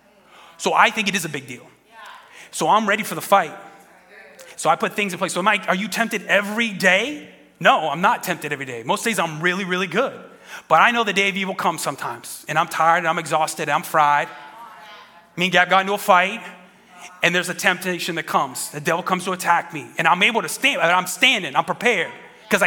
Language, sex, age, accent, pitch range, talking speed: English, male, 30-49, American, 175-220 Hz, 230 wpm